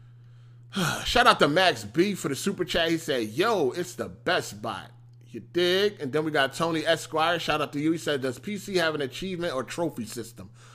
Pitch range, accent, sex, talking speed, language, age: 120-165 Hz, American, male, 210 wpm, English, 30-49